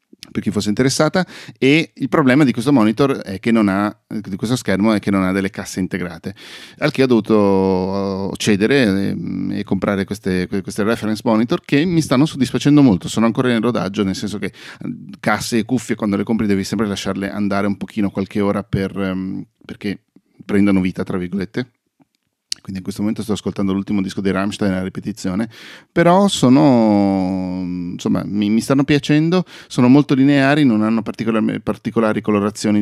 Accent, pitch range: native, 95-120 Hz